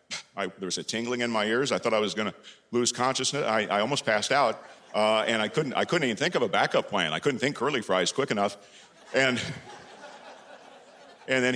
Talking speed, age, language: 220 wpm, 50-69, English